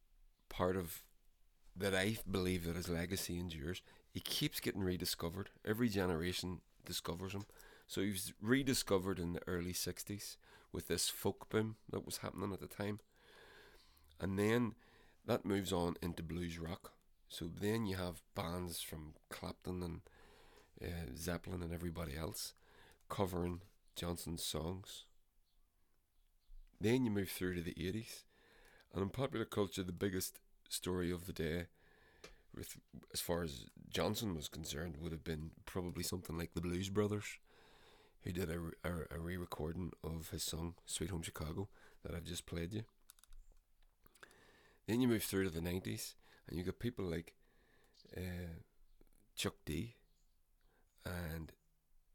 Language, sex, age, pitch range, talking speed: English, male, 30-49, 80-95 Hz, 145 wpm